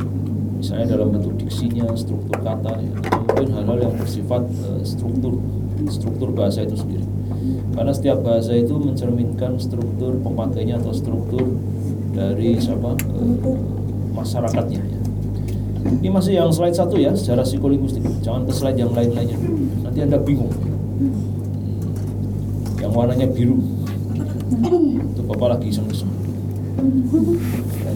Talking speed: 115 wpm